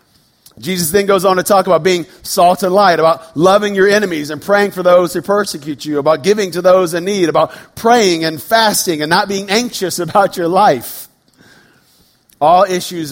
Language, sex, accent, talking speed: English, male, American, 190 wpm